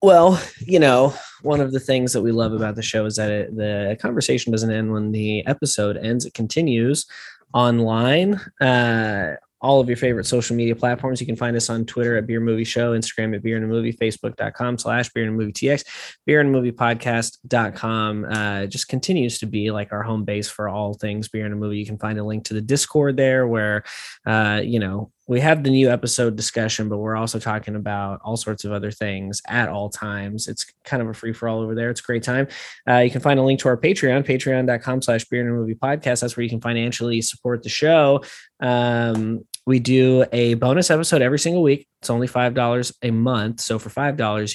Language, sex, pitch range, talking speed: English, male, 110-130 Hz, 220 wpm